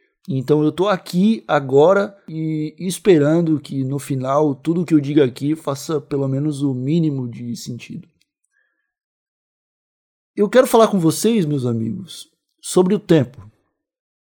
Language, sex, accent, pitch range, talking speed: Portuguese, male, Brazilian, 140-185 Hz, 135 wpm